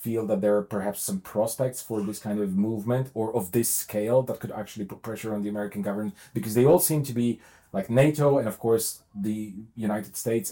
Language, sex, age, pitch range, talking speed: English, male, 30-49, 105-135 Hz, 220 wpm